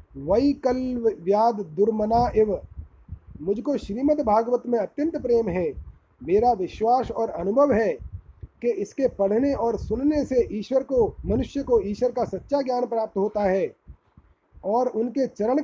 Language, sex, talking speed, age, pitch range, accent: Hindi, male, 135 wpm, 30-49, 210-260 Hz, native